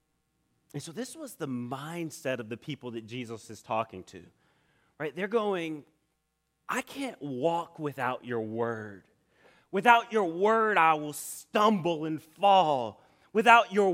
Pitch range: 155-210 Hz